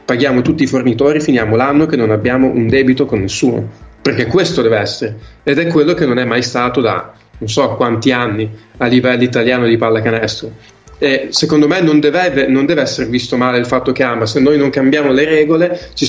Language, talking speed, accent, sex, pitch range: Italian, 205 wpm, native, male, 120-150 Hz